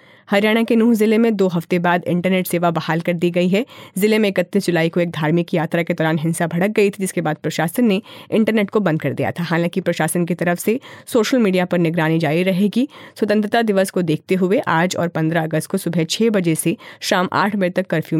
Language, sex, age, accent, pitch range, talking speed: Hindi, female, 30-49, native, 160-200 Hz, 225 wpm